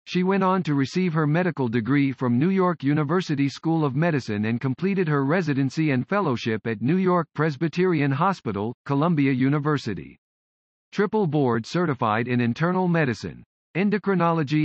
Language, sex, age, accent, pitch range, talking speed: English, male, 50-69, American, 125-180 Hz, 145 wpm